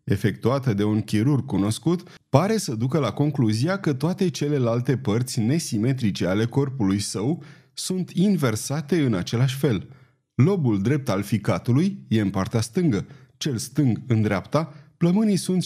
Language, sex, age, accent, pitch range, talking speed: Romanian, male, 30-49, native, 115-160 Hz, 140 wpm